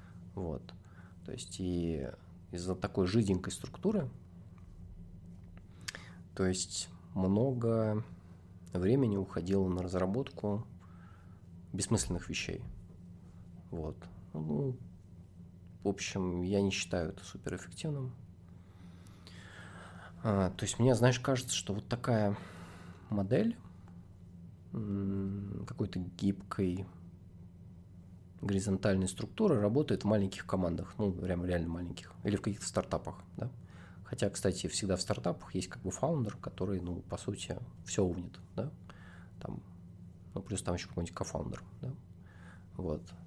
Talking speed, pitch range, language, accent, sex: 110 wpm, 90-95 Hz, Russian, native, male